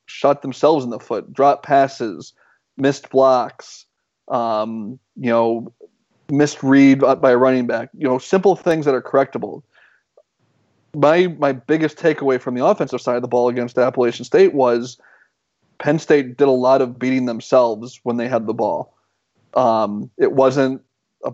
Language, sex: English, male